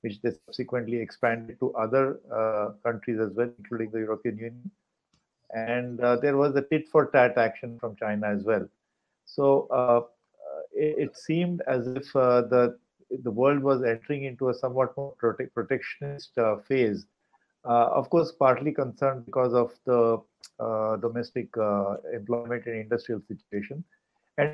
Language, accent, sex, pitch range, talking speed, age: English, Indian, male, 115-135 Hz, 150 wpm, 50-69